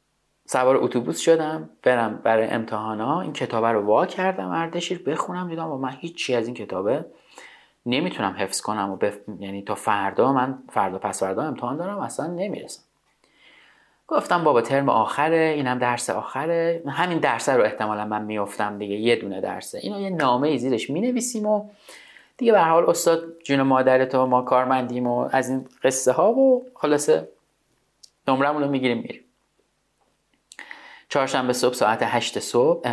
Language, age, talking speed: Persian, 30-49, 160 wpm